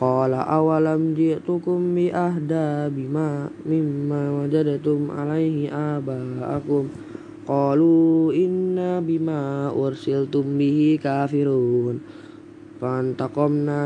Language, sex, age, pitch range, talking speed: Indonesian, female, 20-39, 140-155 Hz, 70 wpm